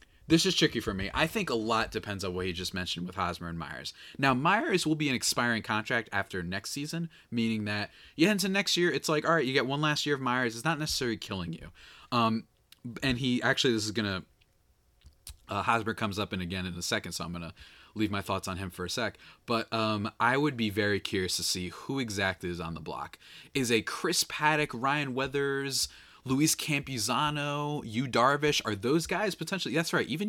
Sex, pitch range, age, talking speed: male, 100-140 Hz, 20-39, 220 wpm